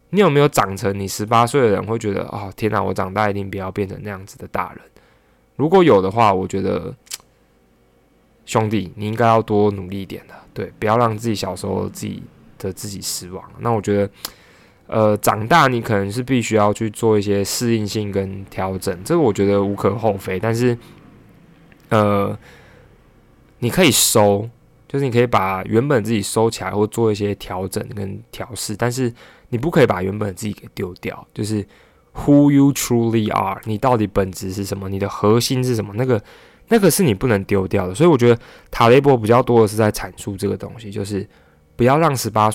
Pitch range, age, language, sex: 95-115 Hz, 20-39, Chinese, male